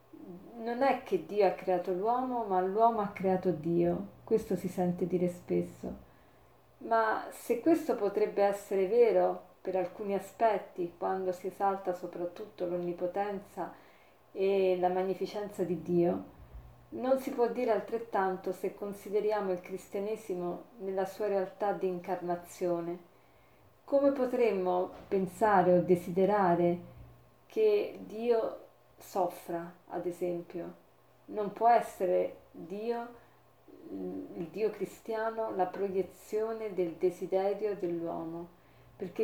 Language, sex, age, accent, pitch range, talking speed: Italian, female, 40-59, native, 175-210 Hz, 110 wpm